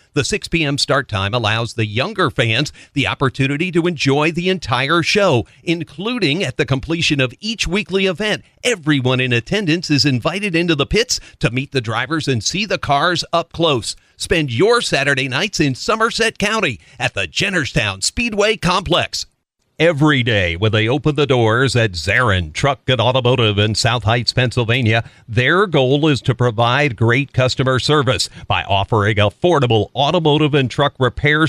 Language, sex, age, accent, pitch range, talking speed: English, male, 50-69, American, 120-160 Hz, 160 wpm